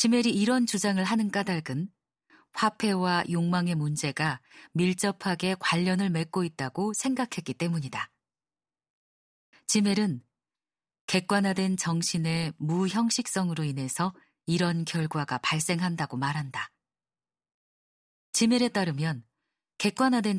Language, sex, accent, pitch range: Korean, female, native, 160-205 Hz